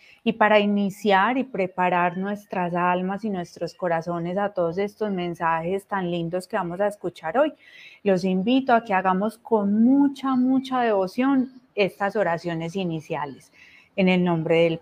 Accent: Colombian